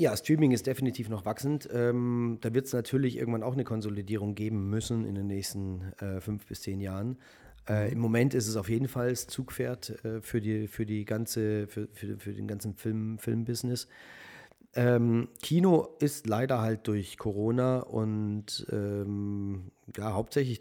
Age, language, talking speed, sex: 40-59, German, 170 wpm, male